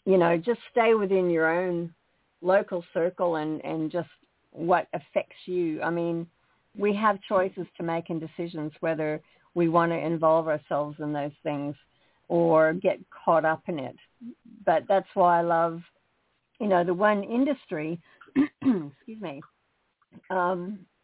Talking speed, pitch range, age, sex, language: 150 wpm, 165-210 Hz, 50-69, female, English